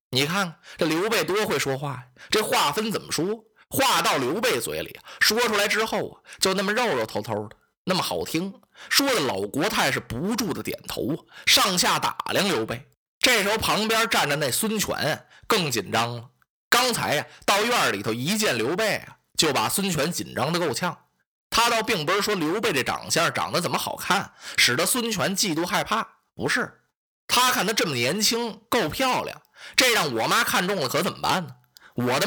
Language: Chinese